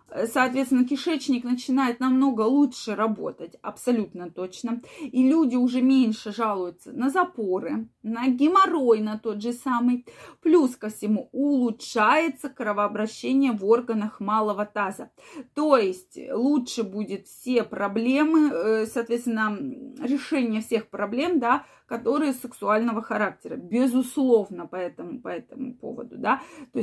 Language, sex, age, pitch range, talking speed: Russian, female, 20-39, 215-270 Hz, 115 wpm